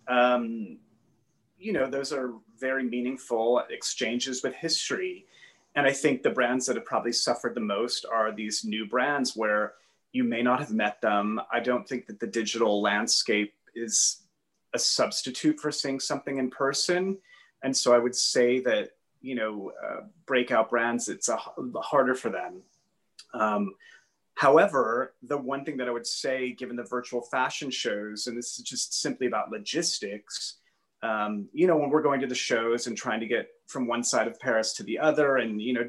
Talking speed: 180 wpm